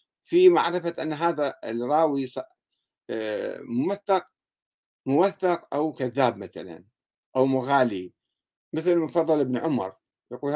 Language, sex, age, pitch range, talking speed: Arabic, male, 50-69, 125-175 Hz, 95 wpm